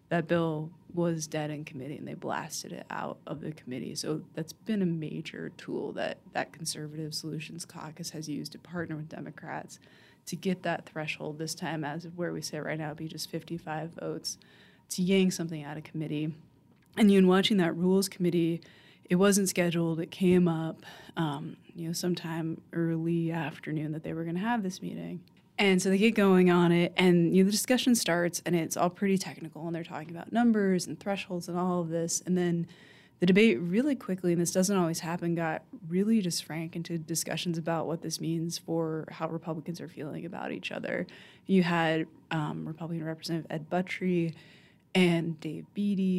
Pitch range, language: 160-180 Hz, English